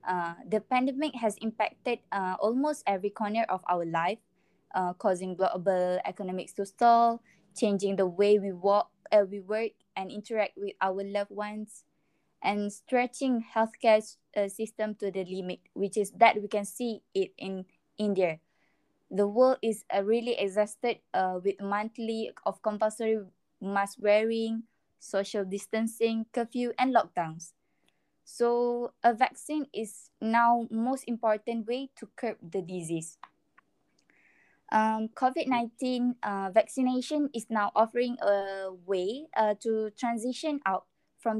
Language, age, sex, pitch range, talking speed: English, 10-29, female, 195-235 Hz, 135 wpm